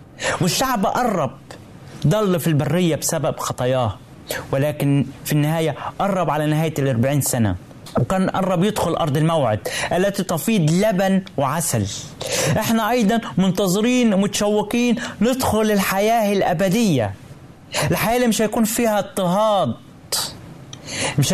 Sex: male